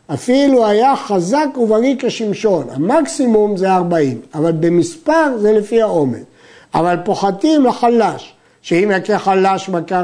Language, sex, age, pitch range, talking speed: Hebrew, male, 50-69, 165-240 Hz, 120 wpm